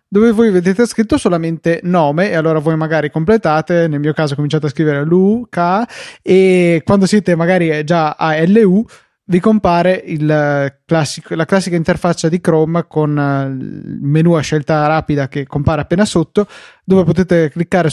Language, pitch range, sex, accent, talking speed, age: Italian, 150-185 Hz, male, native, 150 wpm, 20-39